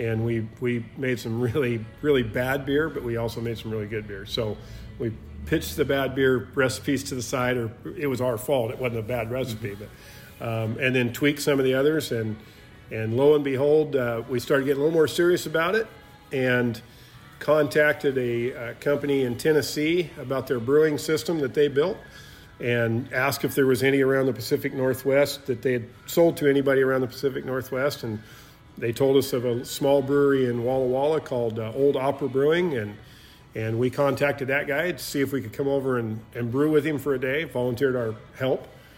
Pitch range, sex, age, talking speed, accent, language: 120-145 Hz, male, 50-69, 210 wpm, American, English